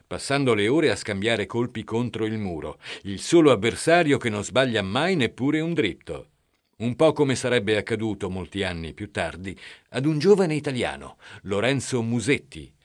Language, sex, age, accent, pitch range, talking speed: Italian, male, 50-69, native, 100-130 Hz, 160 wpm